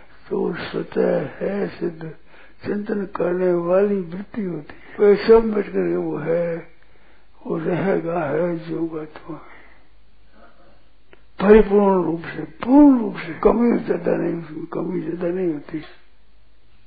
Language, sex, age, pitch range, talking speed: Hindi, male, 60-79, 160-195 Hz, 105 wpm